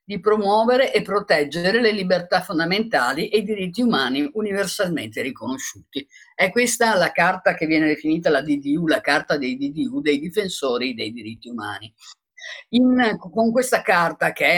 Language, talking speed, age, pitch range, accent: Italian, 150 wpm, 50-69, 145-225 Hz, native